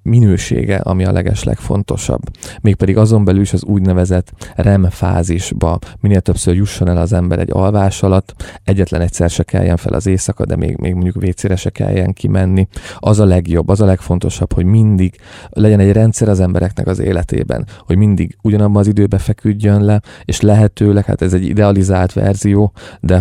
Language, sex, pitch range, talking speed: Hungarian, male, 90-105 Hz, 170 wpm